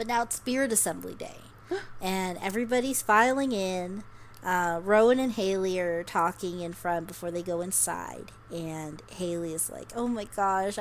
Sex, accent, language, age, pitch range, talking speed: female, American, English, 30-49, 180-250 Hz, 160 wpm